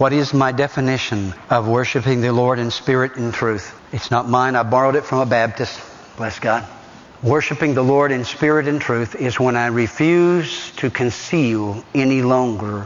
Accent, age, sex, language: American, 60-79, male, English